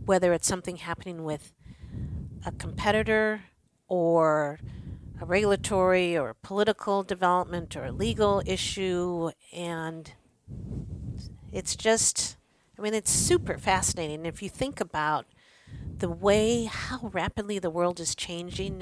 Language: English